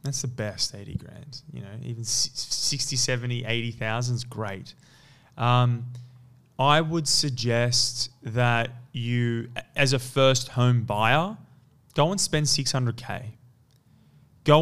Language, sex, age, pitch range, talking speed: English, male, 20-39, 120-140 Hz, 120 wpm